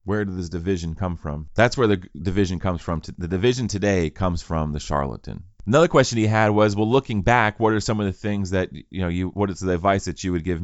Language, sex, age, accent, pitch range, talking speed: English, male, 30-49, American, 85-105 Hz, 255 wpm